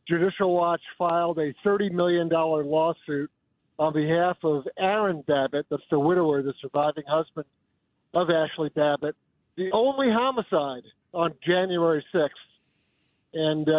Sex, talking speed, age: male, 120 wpm, 50-69